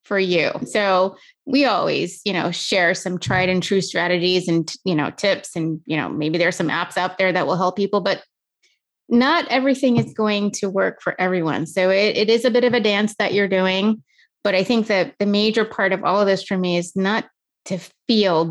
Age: 30-49